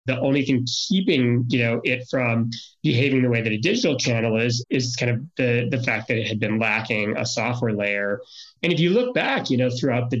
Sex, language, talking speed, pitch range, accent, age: male, English, 230 wpm, 115-140 Hz, American, 30-49